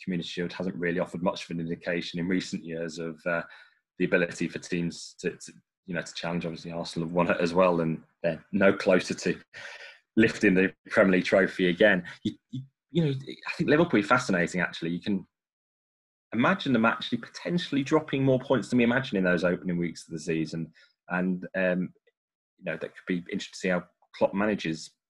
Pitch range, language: 90-110 Hz, English